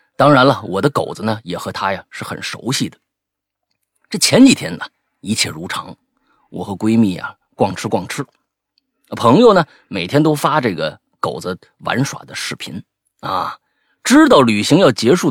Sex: male